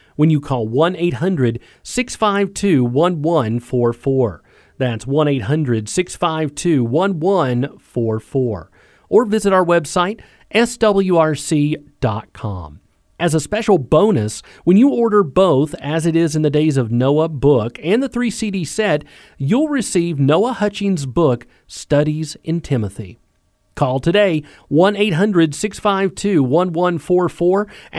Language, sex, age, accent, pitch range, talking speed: English, male, 40-59, American, 120-195 Hz, 95 wpm